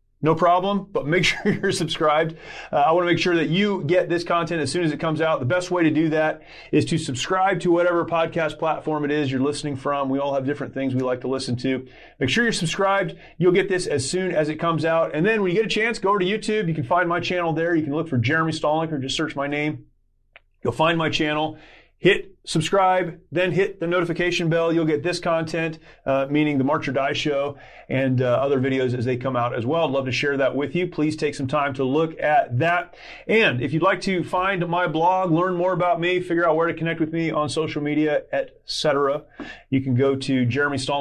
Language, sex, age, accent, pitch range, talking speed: English, male, 30-49, American, 135-175 Hz, 245 wpm